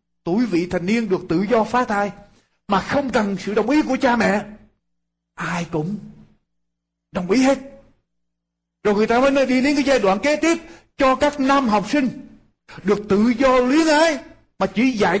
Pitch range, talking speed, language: 160-225 Hz, 185 wpm, Vietnamese